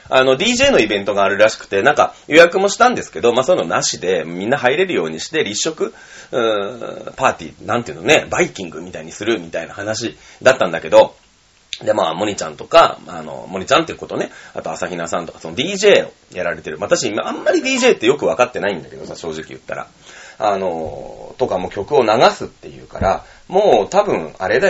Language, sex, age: Japanese, male, 30-49